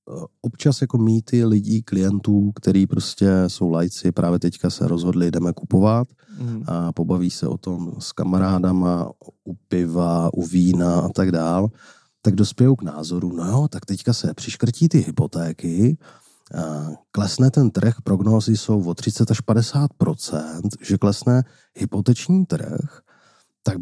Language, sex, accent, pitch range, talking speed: Czech, male, native, 90-130 Hz, 140 wpm